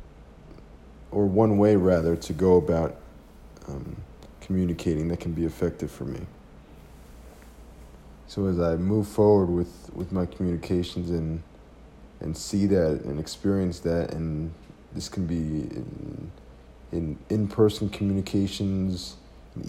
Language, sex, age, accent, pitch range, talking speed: English, male, 50-69, American, 75-90 Hz, 120 wpm